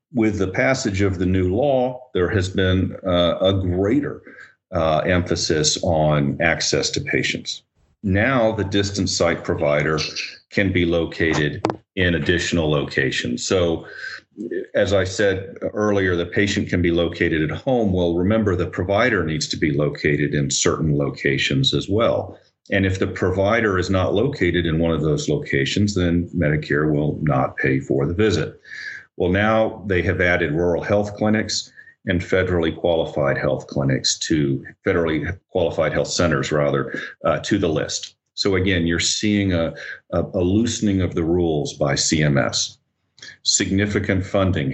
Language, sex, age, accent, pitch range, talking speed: English, male, 40-59, American, 80-100 Hz, 150 wpm